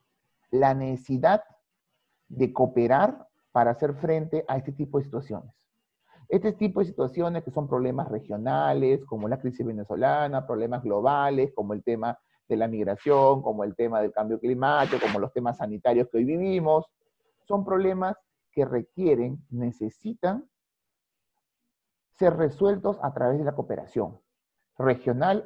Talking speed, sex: 135 wpm, male